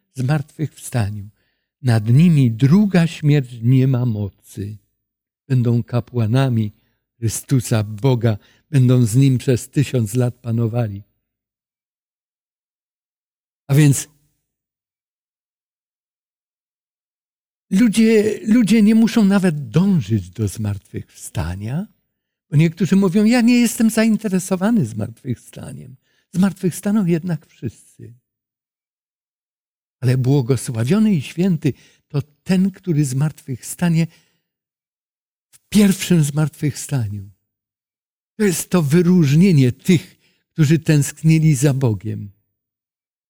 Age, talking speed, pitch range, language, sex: 60-79, 85 wpm, 120-180 Hz, Polish, male